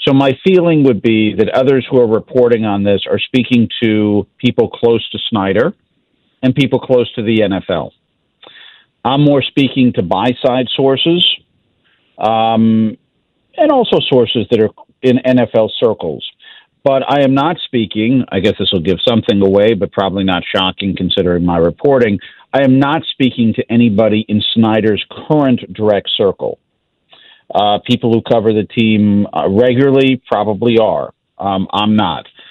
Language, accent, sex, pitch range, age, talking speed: English, American, male, 105-130 Hz, 50-69, 155 wpm